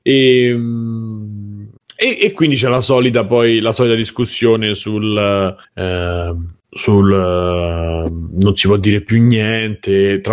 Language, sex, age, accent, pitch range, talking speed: Italian, male, 30-49, native, 100-115 Hz, 110 wpm